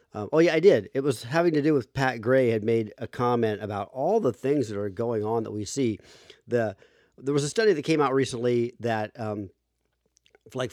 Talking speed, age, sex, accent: 225 wpm, 40-59, male, American